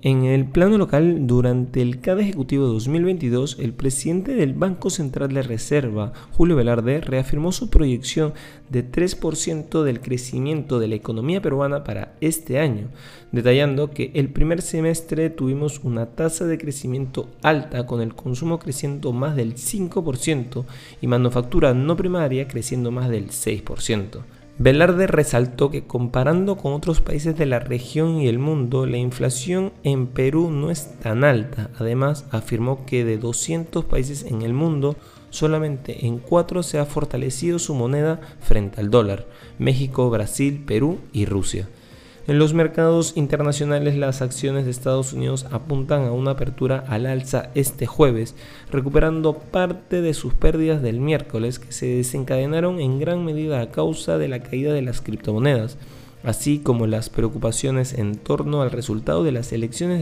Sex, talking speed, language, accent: male, 155 wpm, Spanish, Argentinian